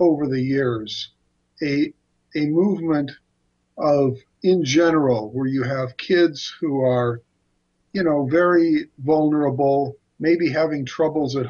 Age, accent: 50-69, American